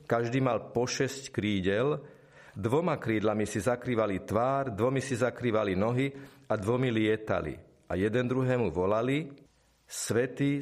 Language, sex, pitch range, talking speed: Slovak, male, 110-140 Hz, 125 wpm